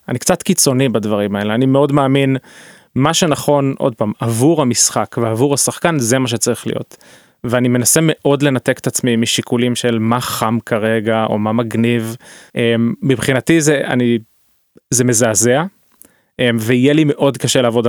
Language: Hebrew